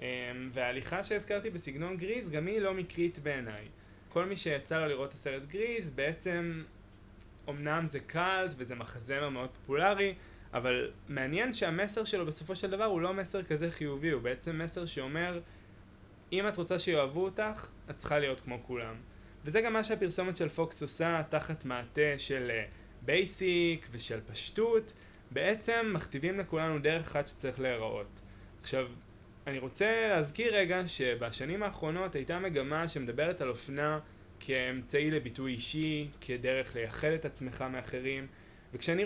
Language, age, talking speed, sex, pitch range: Hebrew, 20-39, 140 wpm, male, 125-185 Hz